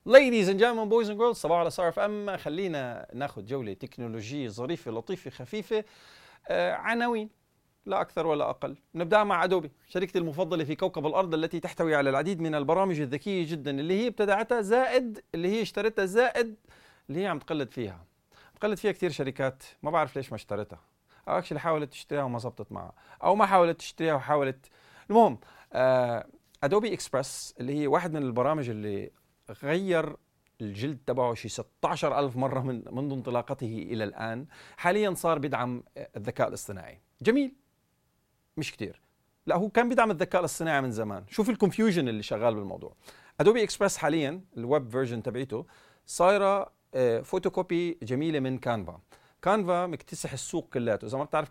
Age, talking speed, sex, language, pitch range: 40-59, 155 wpm, male, Arabic, 125-190 Hz